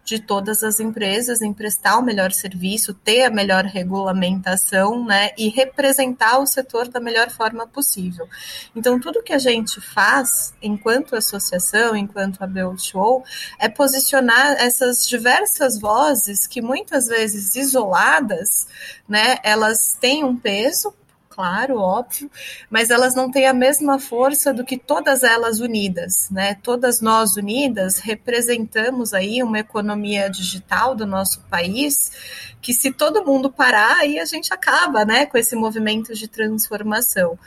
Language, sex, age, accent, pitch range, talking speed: Portuguese, female, 20-39, Brazilian, 195-255 Hz, 140 wpm